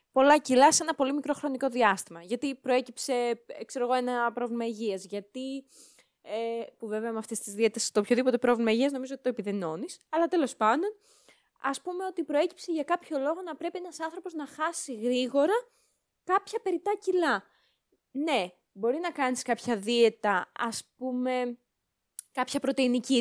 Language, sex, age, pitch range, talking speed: Greek, female, 20-39, 220-300 Hz, 155 wpm